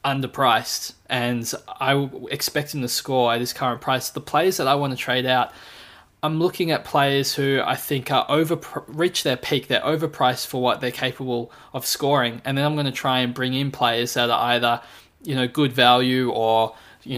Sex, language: male, English